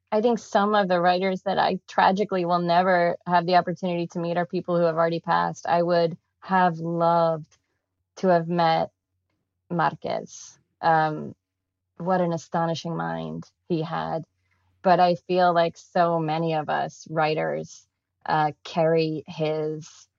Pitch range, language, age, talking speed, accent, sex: 150-175 Hz, English, 20-39, 145 wpm, American, female